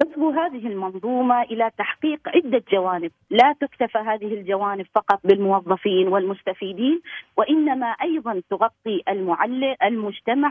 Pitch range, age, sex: 210-280 Hz, 40-59, female